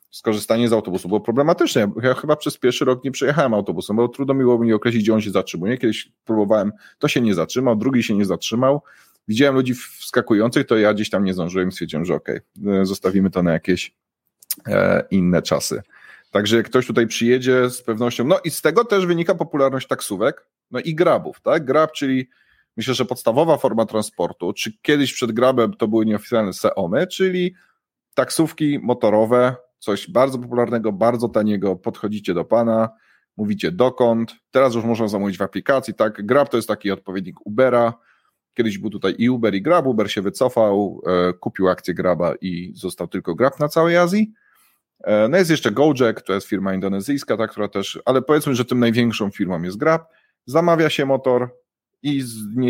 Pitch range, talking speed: 105-135 Hz, 175 wpm